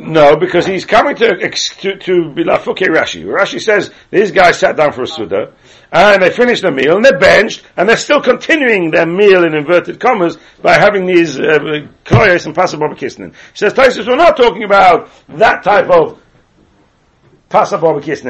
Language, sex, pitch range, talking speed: English, male, 170-250 Hz, 195 wpm